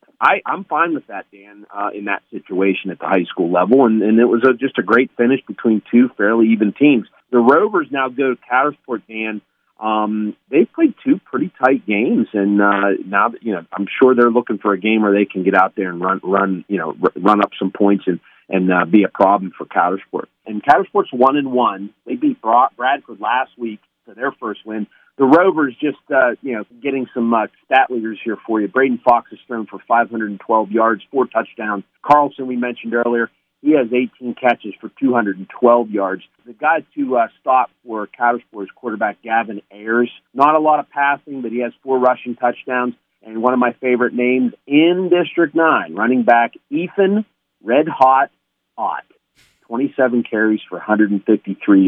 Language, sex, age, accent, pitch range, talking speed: English, male, 40-59, American, 105-130 Hz, 190 wpm